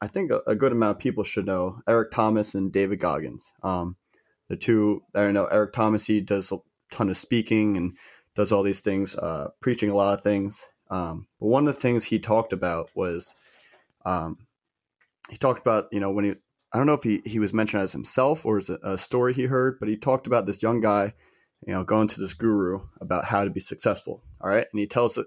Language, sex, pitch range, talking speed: English, male, 95-115 Hz, 230 wpm